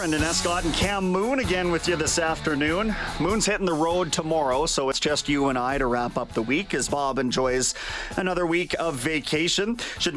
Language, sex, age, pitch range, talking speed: English, male, 30-49, 135-170 Hz, 205 wpm